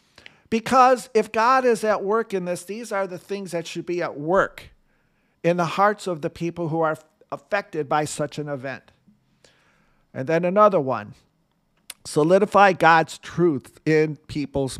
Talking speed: 160 wpm